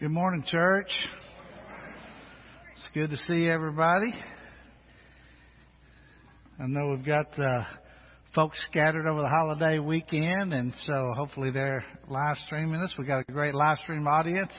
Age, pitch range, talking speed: 60-79, 140-185 Hz, 135 wpm